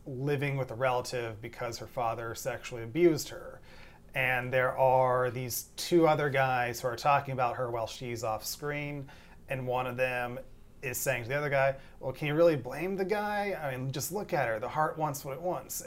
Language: English